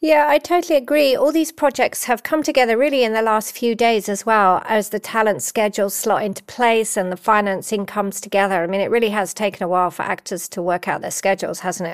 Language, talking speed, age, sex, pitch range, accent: English, 230 wpm, 40-59, female, 190-235 Hz, British